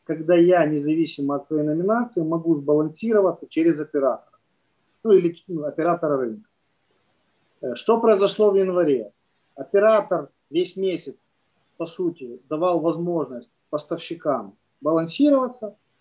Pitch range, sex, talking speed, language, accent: 160-205 Hz, male, 100 wpm, Ukrainian, native